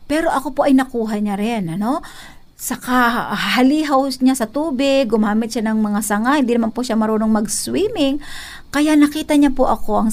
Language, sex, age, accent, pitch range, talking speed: Filipino, female, 50-69, native, 215-275 Hz, 185 wpm